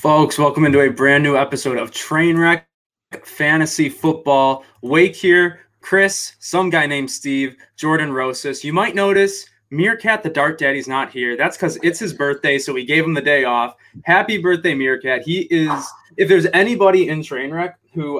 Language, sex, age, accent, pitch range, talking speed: English, male, 20-39, American, 125-165 Hz, 170 wpm